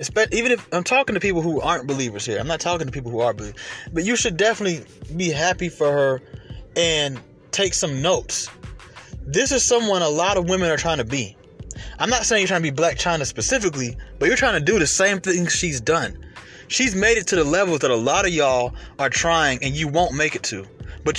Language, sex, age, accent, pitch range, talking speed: English, male, 20-39, American, 130-180 Hz, 230 wpm